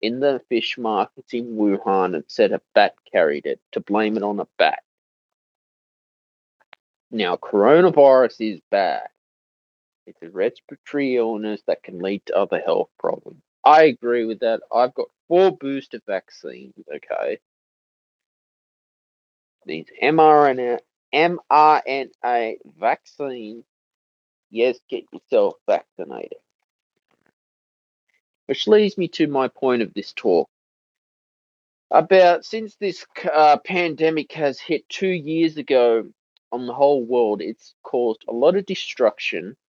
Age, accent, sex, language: 20-39, Australian, male, English